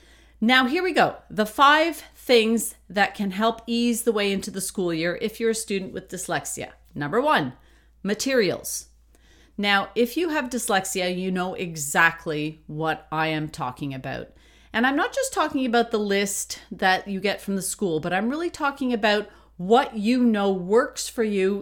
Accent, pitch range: American, 185-235 Hz